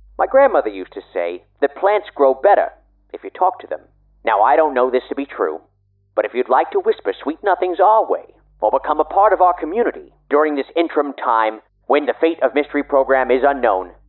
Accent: American